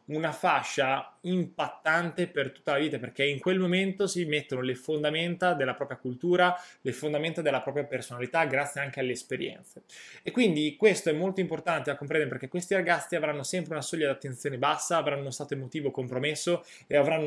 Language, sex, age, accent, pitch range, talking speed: Italian, male, 20-39, native, 140-170 Hz, 180 wpm